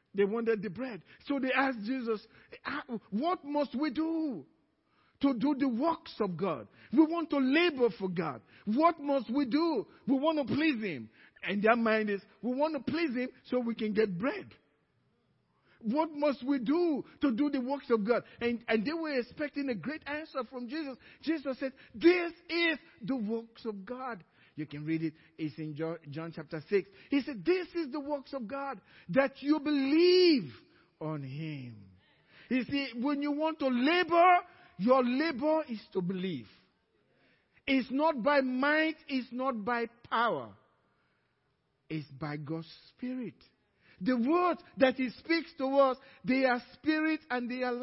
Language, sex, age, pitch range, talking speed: English, male, 50-69, 220-295 Hz, 170 wpm